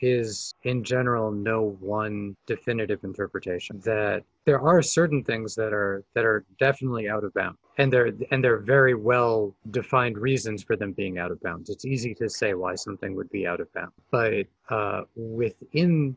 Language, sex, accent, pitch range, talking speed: English, male, American, 105-130 Hz, 180 wpm